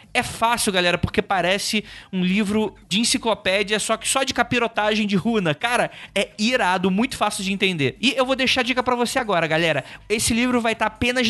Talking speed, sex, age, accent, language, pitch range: 205 wpm, male, 20-39, Brazilian, Portuguese, 155-220 Hz